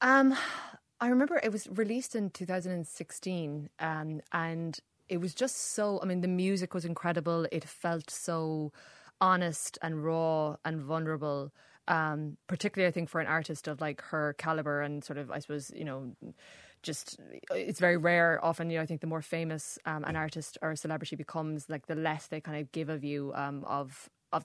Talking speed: 190 wpm